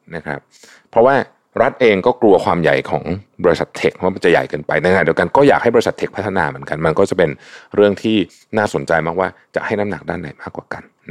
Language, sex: Thai, male